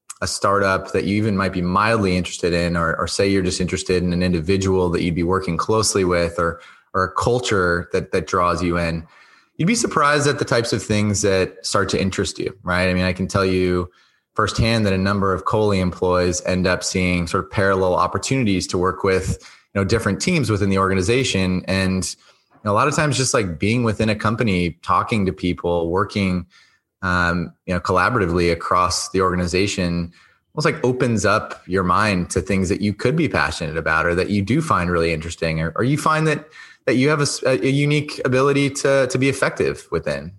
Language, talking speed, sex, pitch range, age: English, 205 wpm, male, 90-110 Hz, 20-39